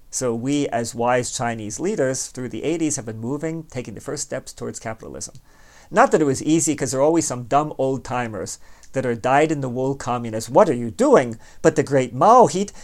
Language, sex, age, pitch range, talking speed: English, male, 40-59, 115-140 Hz, 220 wpm